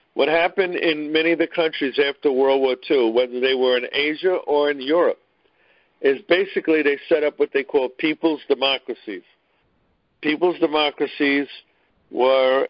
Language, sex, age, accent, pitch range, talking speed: English, male, 50-69, American, 130-155 Hz, 150 wpm